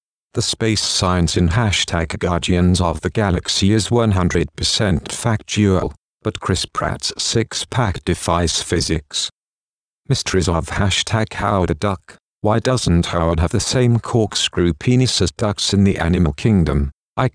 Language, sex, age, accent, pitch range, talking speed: English, male, 50-69, British, 85-110 Hz, 135 wpm